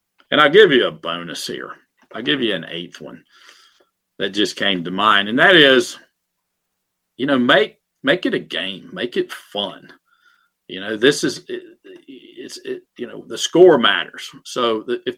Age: 50-69